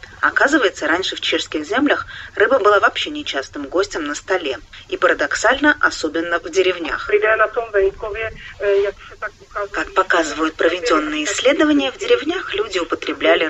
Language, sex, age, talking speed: Russian, female, 30-49, 110 wpm